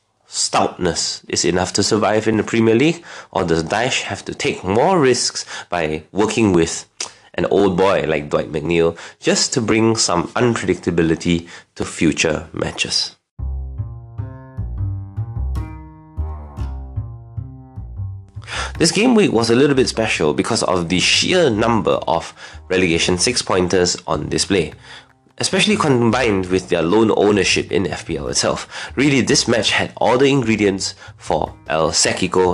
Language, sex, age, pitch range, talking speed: English, male, 30-49, 85-115 Hz, 130 wpm